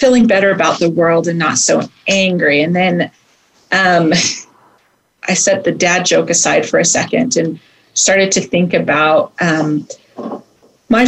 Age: 40-59